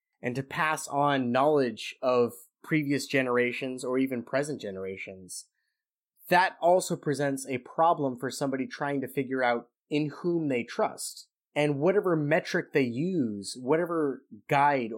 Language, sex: English, male